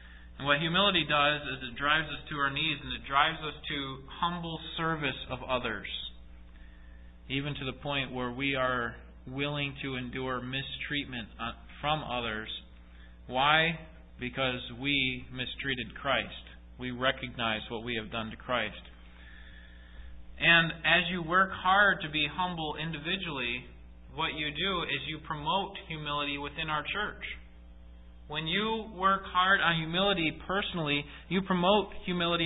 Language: English